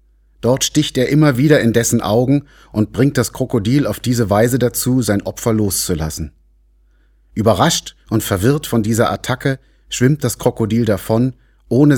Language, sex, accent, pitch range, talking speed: German, male, German, 75-120 Hz, 150 wpm